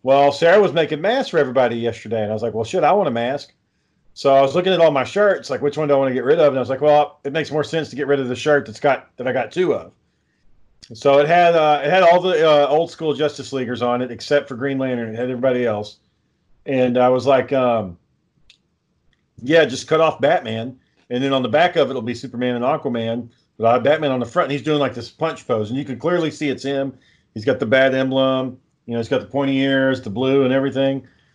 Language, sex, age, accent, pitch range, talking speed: English, male, 40-59, American, 125-155 Hz, 270 wpm